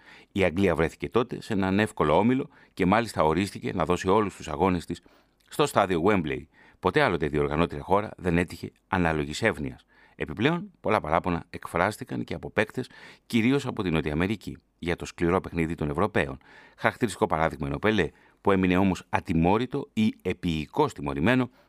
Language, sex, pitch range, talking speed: Greek, male, 80-110 Hz, 160 wpm